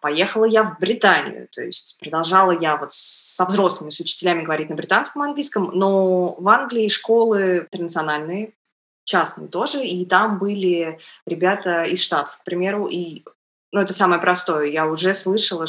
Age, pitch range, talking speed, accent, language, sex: 20-39, 165-205 Hz, 155 wpm, native, Russian, female